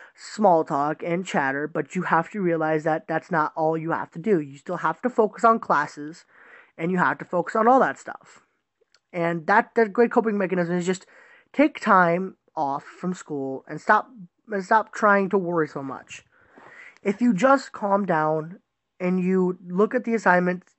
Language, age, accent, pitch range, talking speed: English, 20-39, American, 165-225 Hz, 190 wpm